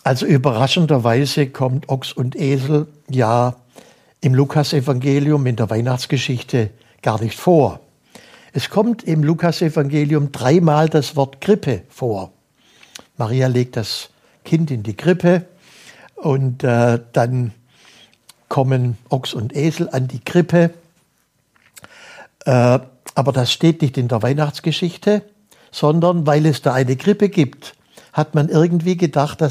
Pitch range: 130-155 Hz